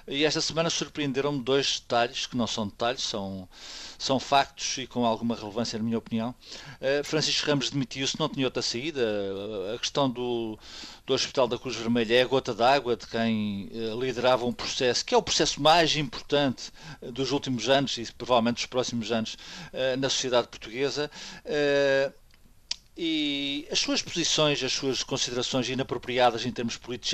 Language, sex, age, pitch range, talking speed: Portuguese, male, 50-69, 120-155 Hz, 160 wpm